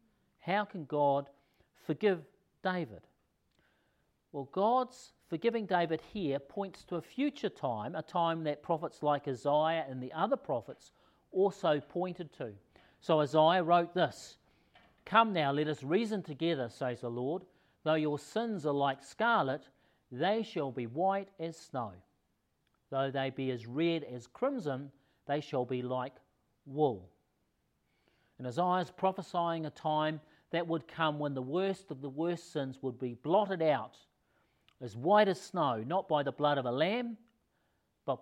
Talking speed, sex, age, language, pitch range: 150 wpm, male, 50-69, English, 135-180 Hz